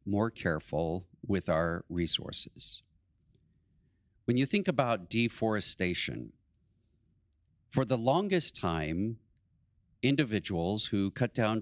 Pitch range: 95-125 Hz